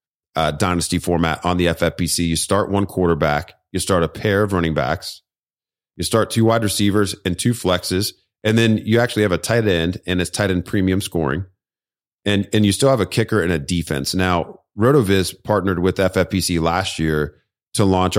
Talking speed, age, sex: 190 wpm, 30-49, male